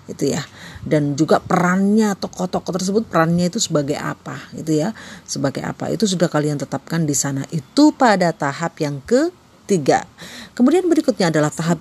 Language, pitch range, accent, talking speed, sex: Indonesian, 150-185 Hz, native, 150 wpm, female